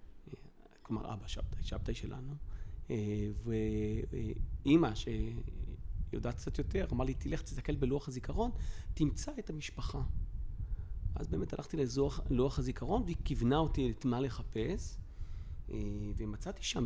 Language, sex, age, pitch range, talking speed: Hebrew, male, 30-49, 105-130 Hz, 105 wpm